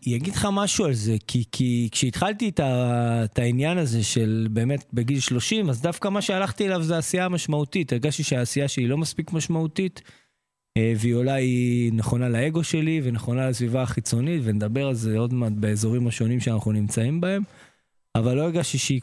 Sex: male